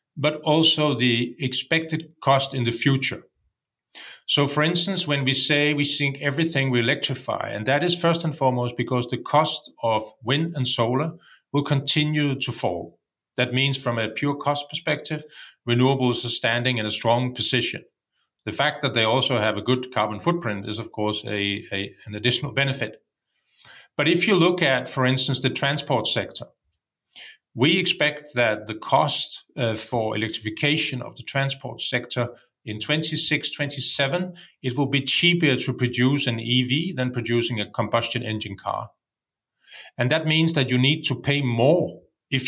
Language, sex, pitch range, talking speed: English, male, 120-150 Hz, 165 wpm